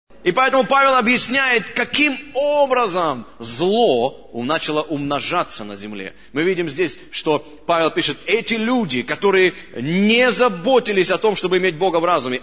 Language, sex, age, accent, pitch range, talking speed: Russian, male, 30-49, native, 155-230 Hz, 140 wpm